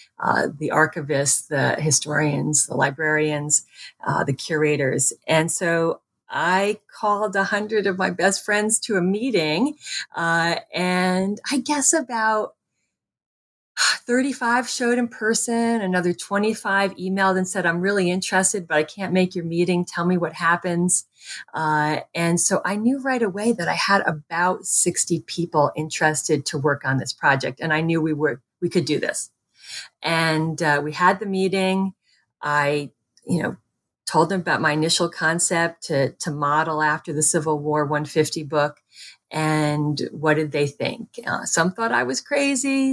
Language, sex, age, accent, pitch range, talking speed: English, female, 40-59, American, 155-205 Hz, 155 wpm